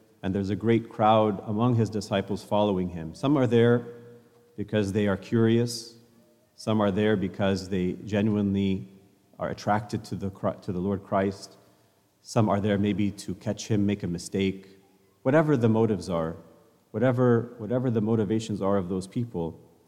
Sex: male